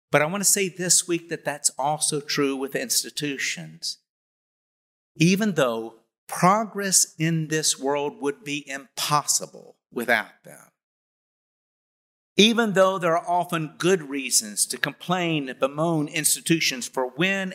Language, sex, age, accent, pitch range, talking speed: English, male, 50-69, American, 140-180 Hz, 130 wpm